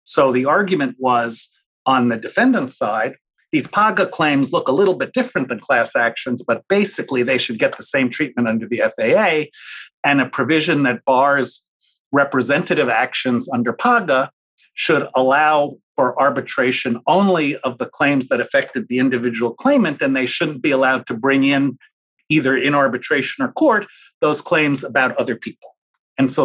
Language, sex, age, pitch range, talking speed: English, male, 50-69, 125-170 Hz, 165 wpm